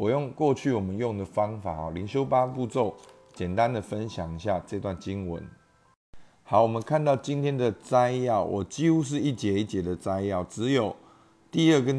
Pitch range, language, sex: 95-130 Hz, Chinese, male